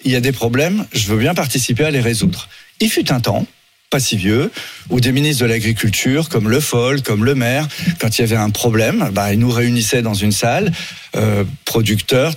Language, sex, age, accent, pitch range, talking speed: French, male, 40-59, French, 110-140 Hz, 220 wpm